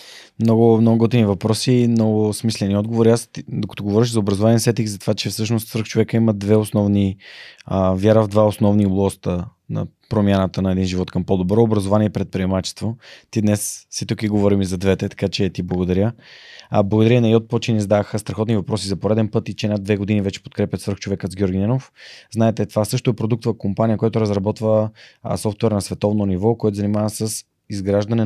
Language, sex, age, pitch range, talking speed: Bulgarian, male, 20-39, 100-115 Hz, 185 wpm